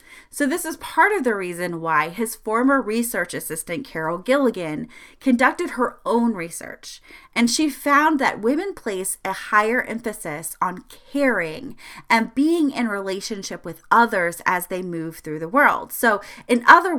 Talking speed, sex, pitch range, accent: 155 wpm, female, 190-275 Hz, American